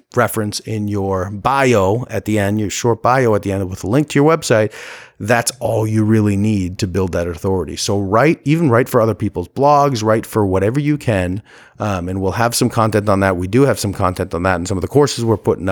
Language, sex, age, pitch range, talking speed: English, male, 30-49, 100-120 Hz, 240 wpm